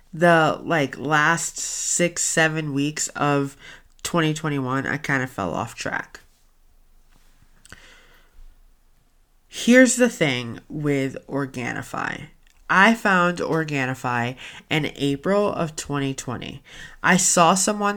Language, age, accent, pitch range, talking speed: English, 20-39, American, 140-185 Hz, 95 wpm